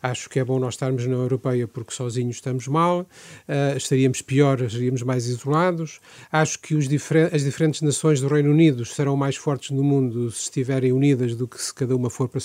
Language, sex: Portuguese, male